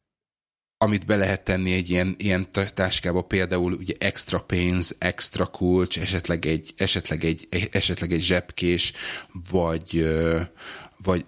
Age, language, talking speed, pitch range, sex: 30-49, Hungarian, 130 wpm, 90-100 Hz, male